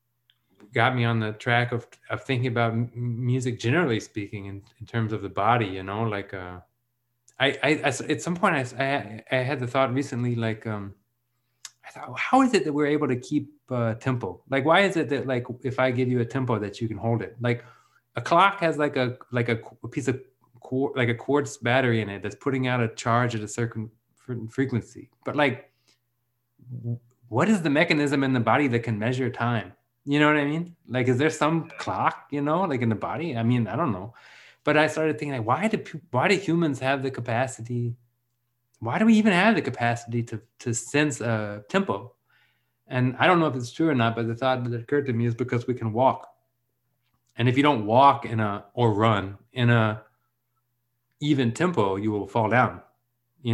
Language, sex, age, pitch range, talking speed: English, male, 30-49, 115-140 Hz, 215 wpm